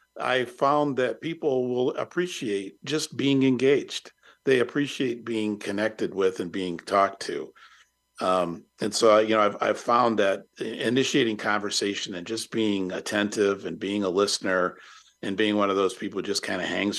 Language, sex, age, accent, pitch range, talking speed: English, male, 50-69, American, 90-115 Hz, 170 wpm